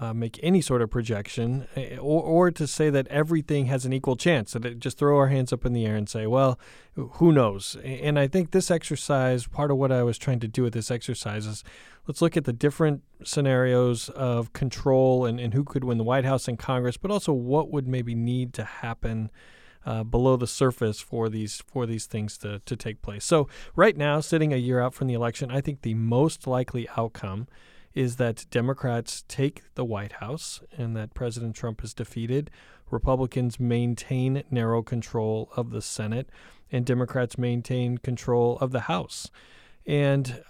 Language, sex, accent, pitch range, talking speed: English, male, American, 115-140 Hz, 195 wpm